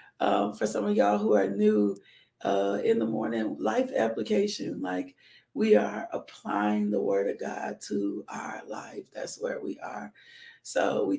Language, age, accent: English, 40-59, American